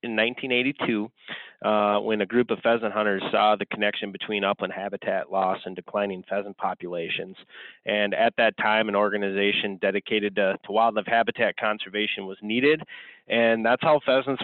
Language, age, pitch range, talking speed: English, 30-49, 100-110 Hz, 160 wpm